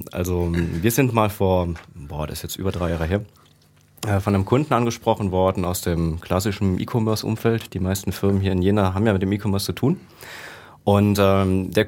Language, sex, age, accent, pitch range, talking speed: German, male, 30-49, German, 85-105 Hz, 190 wpm